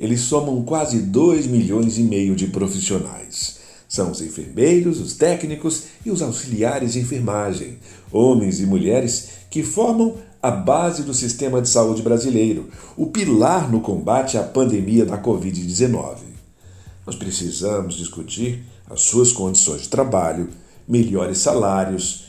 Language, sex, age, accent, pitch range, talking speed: English, male, 60-79, Brazilian, 95-130 Hz, 130 wpm